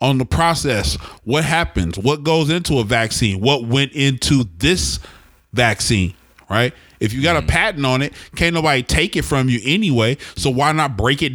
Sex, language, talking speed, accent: male, English, 185 wpm, American